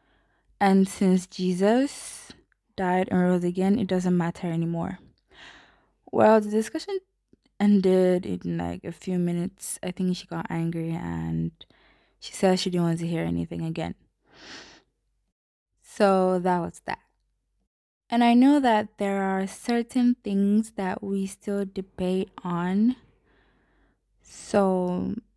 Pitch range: 180-215 Hz